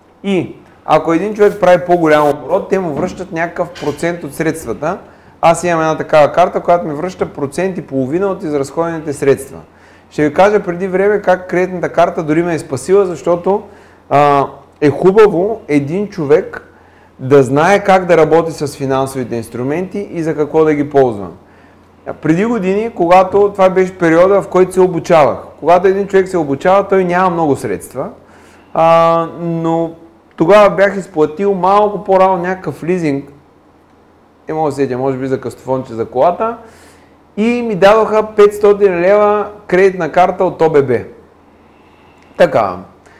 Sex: male